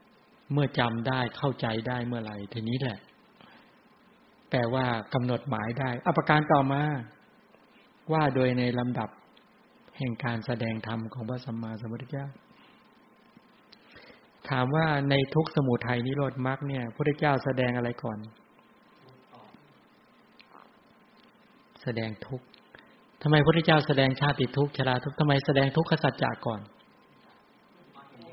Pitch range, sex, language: 130-170 Hz, male, English